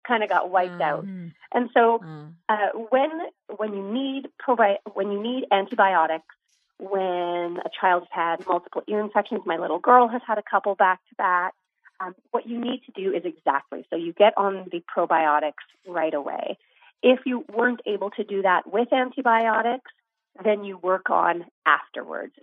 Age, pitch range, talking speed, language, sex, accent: 30-49, 175-230 Hz, 170 wpm, English, female, American